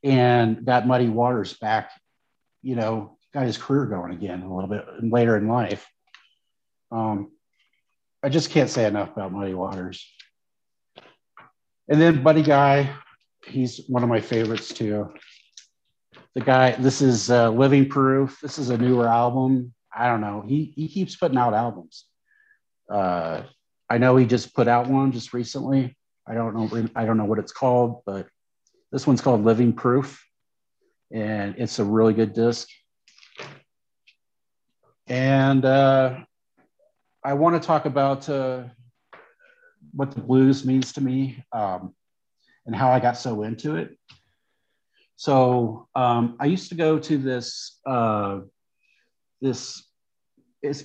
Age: 50-69